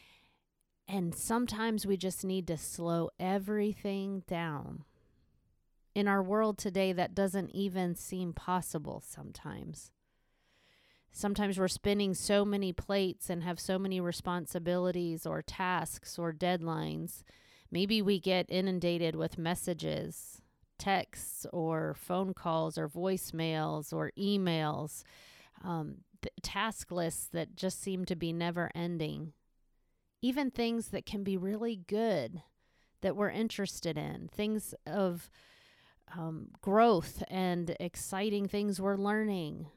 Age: 30-49